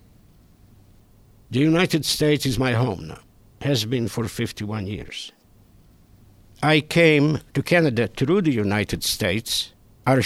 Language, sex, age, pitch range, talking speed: English, male, 60-79, 105-135 Hz, 125 wpm